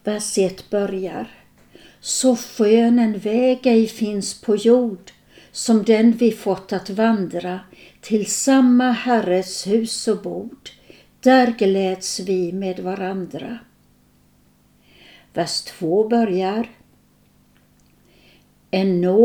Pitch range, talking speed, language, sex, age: 195-235 Hz, 95 wpm, Swedish, female, 60-79